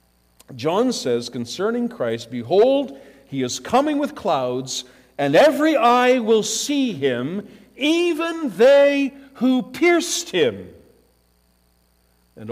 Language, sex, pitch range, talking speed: English, male, 110-180 Hz, 105 wpm